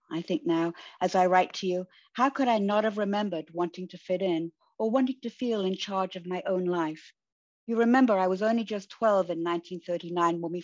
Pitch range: 170-200 Hz